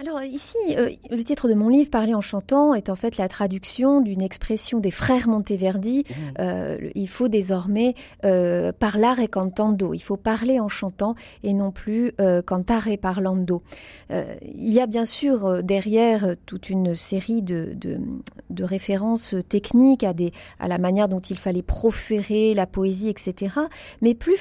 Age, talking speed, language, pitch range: 40-59, 180 wpm, French, 200-265 Hz